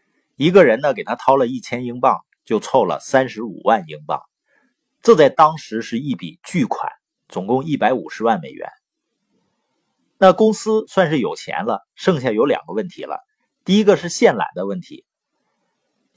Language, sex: Chinese, male